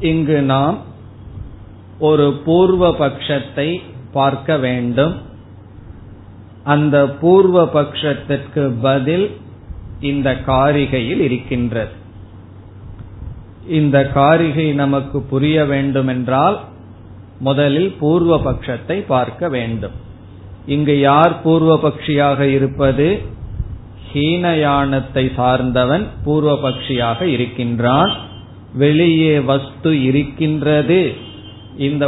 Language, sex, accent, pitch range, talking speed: Tamil, male, native, 110-145 Hz, 70 wpm